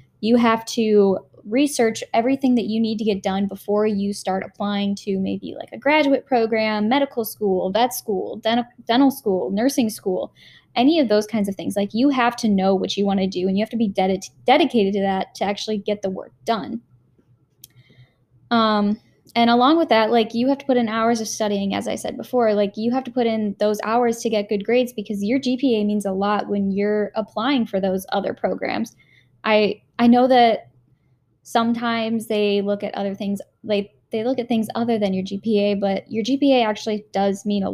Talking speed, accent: 205 wpm, American